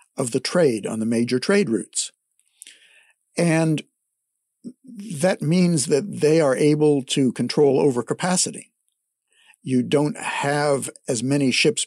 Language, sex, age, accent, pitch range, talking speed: English, male, 60-79, American, 125-180 Hz, 125 wpm